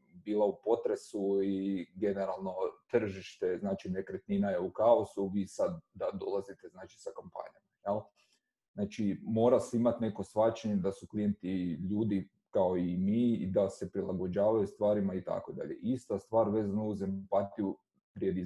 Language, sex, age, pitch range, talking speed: Croatian, male, 30-49, 100-115 Hz, 140 wpm